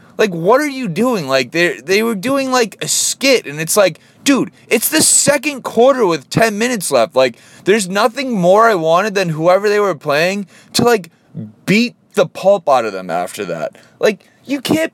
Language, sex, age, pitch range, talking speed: English, male, 20-39, 155-240 Hz, 195 wpm